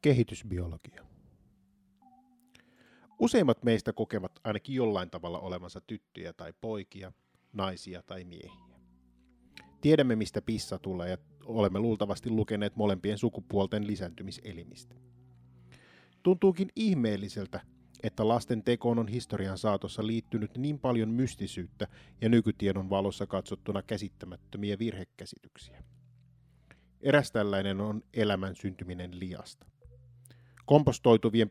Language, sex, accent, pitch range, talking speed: Finnish, male, native, 95-120 Hz, 95 wpm